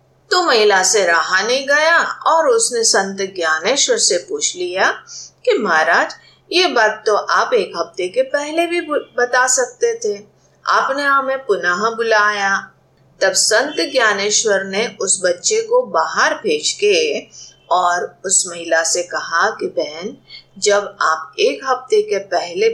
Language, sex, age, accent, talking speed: Hindi, female, 50-69, native, 145 wpm